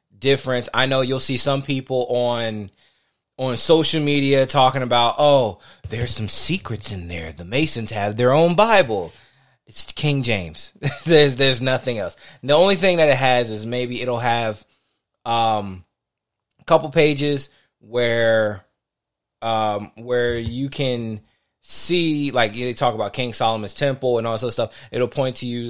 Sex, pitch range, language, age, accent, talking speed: male, 110-140 Hz, English, 20-39, American, 160 wpm